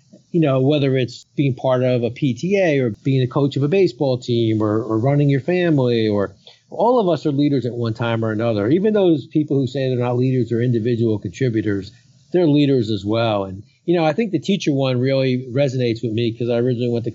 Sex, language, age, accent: male, English, 40-59, American